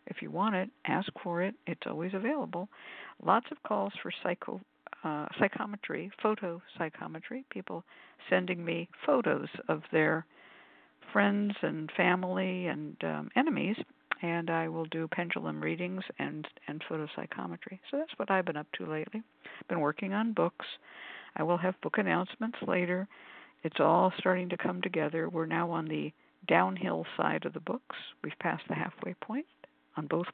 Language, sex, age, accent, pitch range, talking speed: English, female, 60-79, American, 160-205 Hz, 160 wpm